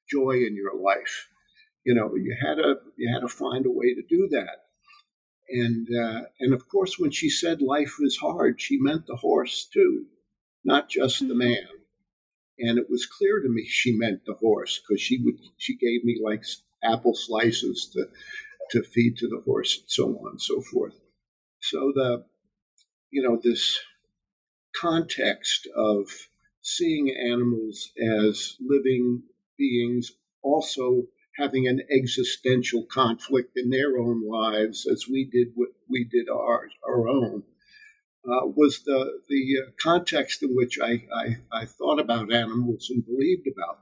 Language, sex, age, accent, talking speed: English, male, 50-69, American, 155 wpm